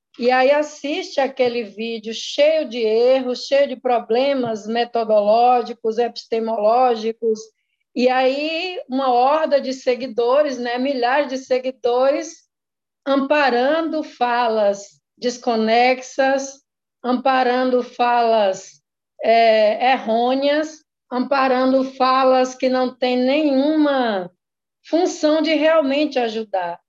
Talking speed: 85 wpm